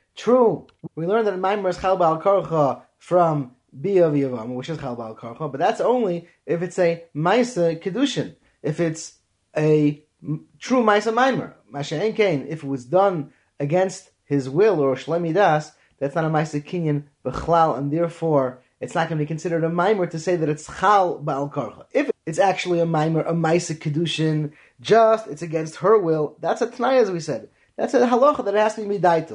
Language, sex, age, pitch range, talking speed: English, male, 20-39, 150-200 Hz, 180 wpm